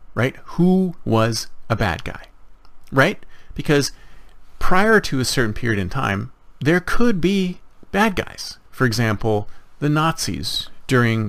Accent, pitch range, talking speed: American, 115-180 Hz, 135 wpm